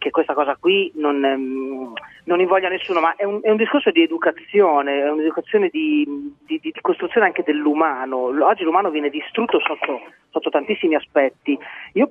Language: Italian